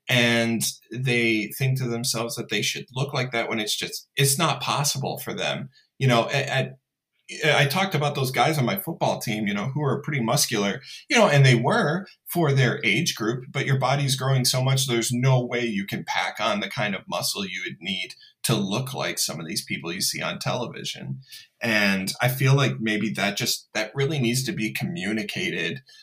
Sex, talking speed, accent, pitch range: male, 205 wpm, American, 110-140 Hz